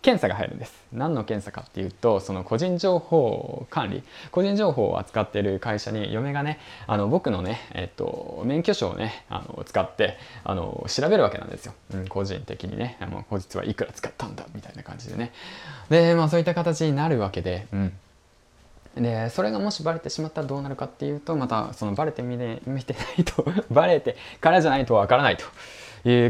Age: 20-39